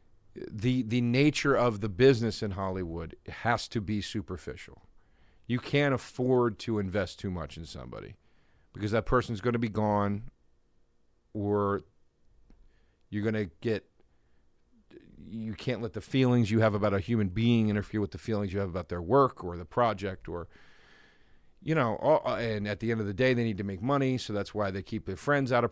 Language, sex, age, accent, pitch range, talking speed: English, male, 40-59, American, 100-120 Hz, 185 wpm